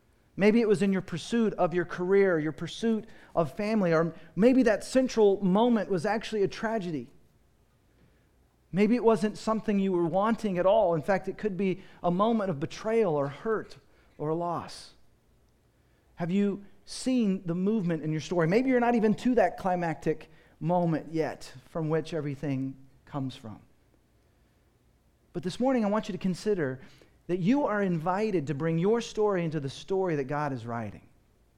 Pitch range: 155-210 Hz